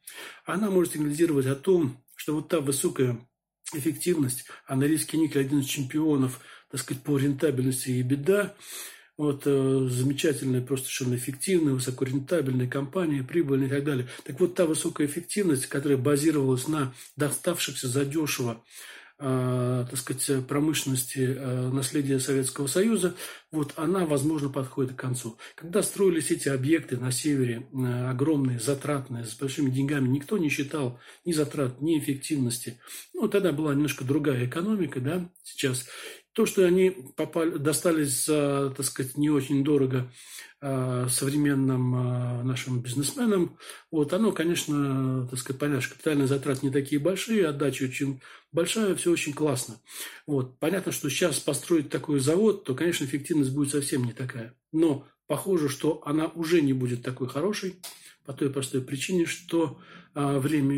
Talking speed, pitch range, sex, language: 140 wpm, 130-160 Hz, male, Turkish